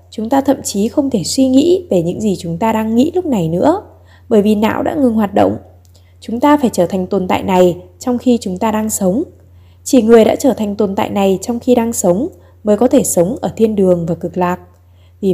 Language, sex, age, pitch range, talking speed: Vietnamese, female, 20-39, 170-245 Hz, 245 wpm